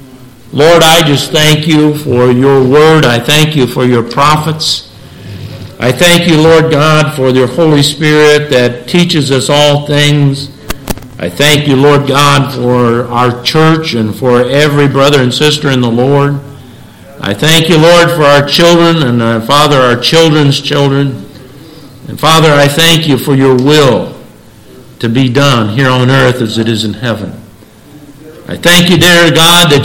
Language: English